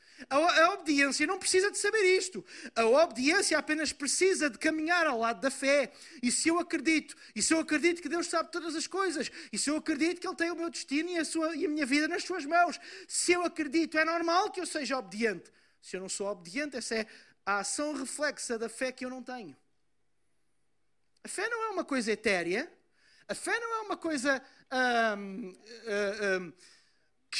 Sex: male